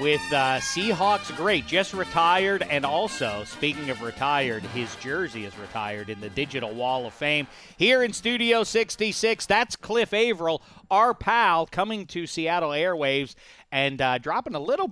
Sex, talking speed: male, 155 wpm